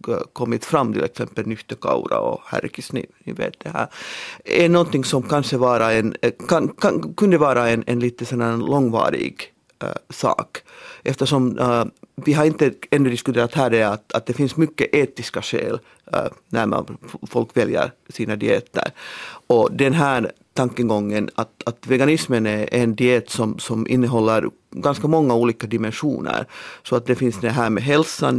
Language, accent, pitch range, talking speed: Finnish, native, 115-140 Hz, 165 wpm